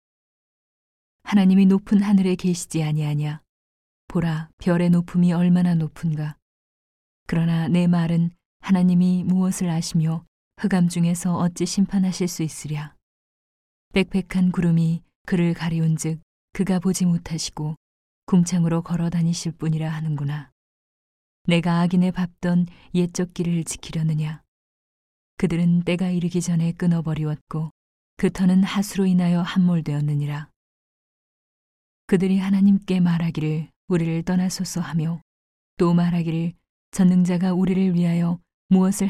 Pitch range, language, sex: 160-185 Hz, Korean, female